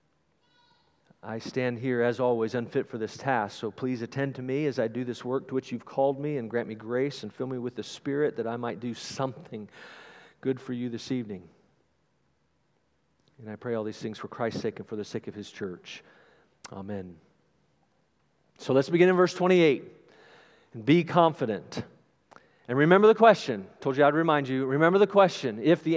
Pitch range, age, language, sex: 130-190 Hz, 40-59, English, male